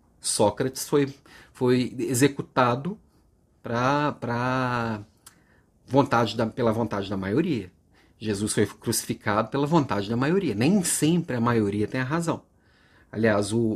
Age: 40-59